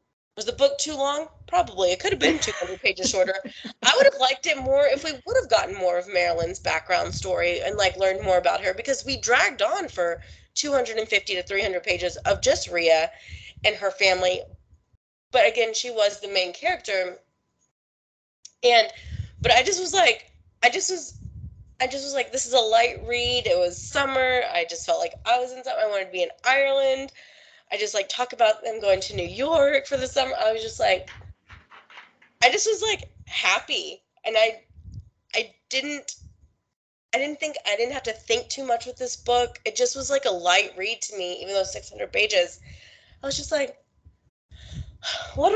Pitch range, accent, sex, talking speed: 190-285 Hz, American, female, 205 wpm